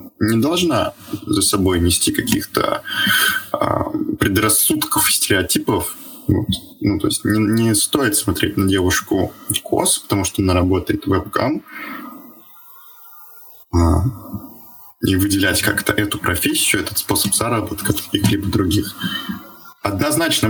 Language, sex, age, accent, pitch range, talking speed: Russian, male, 20-39, native, 90-110 Hz, 115 wpm